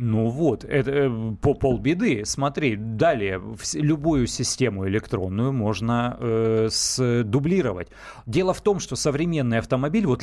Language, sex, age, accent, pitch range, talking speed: Russian, male, 30-49, native, 125-165 Hz, 110 wpm